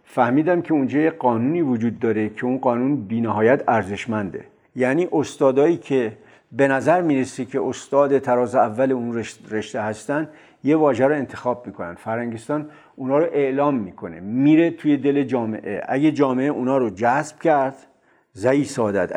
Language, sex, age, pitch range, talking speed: Persian, male, 50-69, 115-150 Hz, 145 wpm